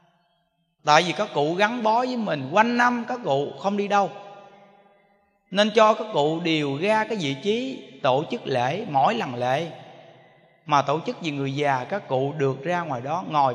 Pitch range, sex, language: 140-220 Hz, male, Vietnamese